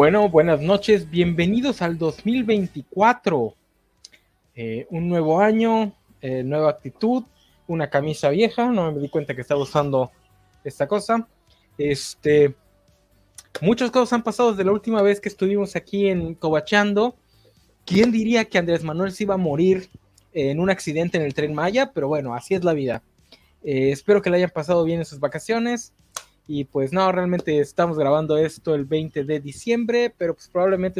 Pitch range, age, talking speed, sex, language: 150-210 Hz, 20-39, 165 wpm, male, Spanish